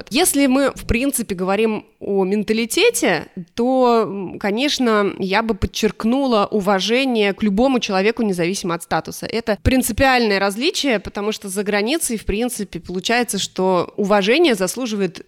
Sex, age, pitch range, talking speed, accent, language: female, 20-39, 190-230 Hz, 125 wpm, native, Russian